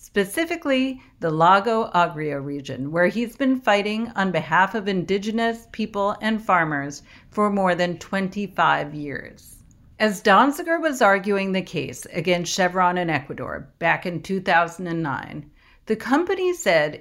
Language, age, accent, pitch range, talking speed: English, 50-69, American, 170-235 Hz, 130 wpm